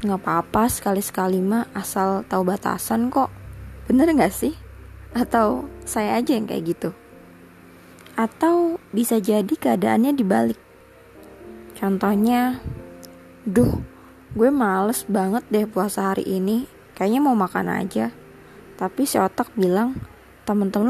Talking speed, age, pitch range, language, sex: 115 wpm, 20-39, 180-240 Hz, Indonesian, female